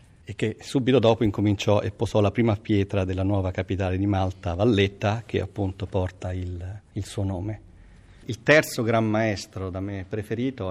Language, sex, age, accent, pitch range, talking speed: Italian, male, 40-59, native, 95-110 Hz, 170 wpm